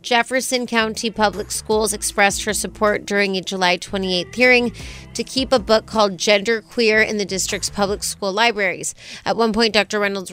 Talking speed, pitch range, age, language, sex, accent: 175 wpm, 195-230 Hz, 30-49, English, female, American